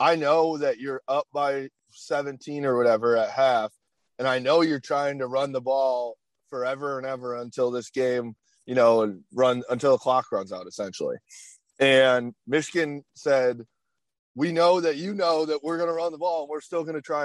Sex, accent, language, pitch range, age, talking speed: male, American, English, 130-170 Hz, 20-39, 200 wpm